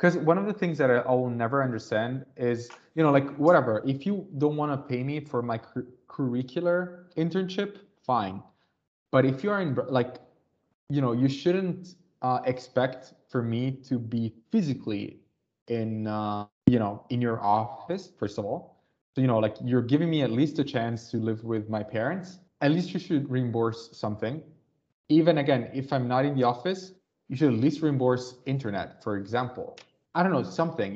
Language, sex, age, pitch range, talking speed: English, male, 20-39, 115-150 Hz, 190 wpm